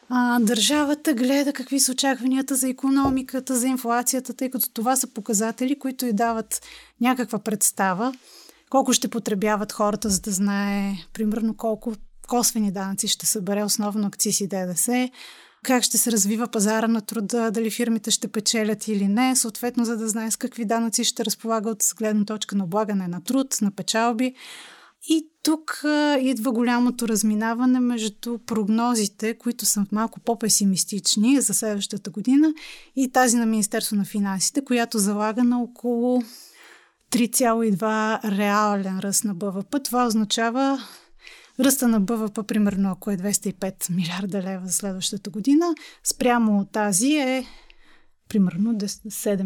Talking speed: 140 wpm